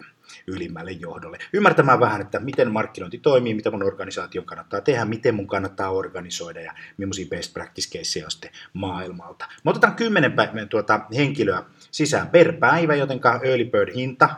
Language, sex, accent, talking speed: Finnish, male, native, 150 wpm